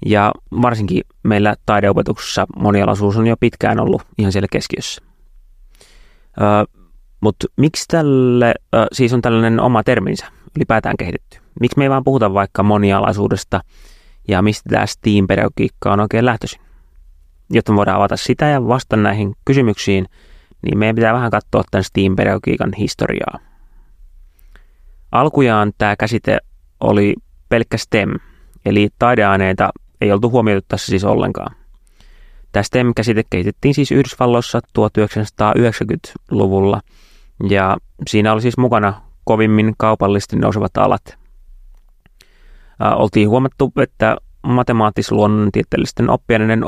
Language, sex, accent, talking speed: Finnish, male, native, 115 wpm